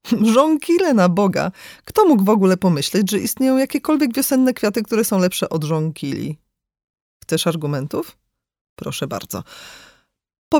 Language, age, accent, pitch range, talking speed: Polish, 40-59, native, 155-225 Hz, 130 wpm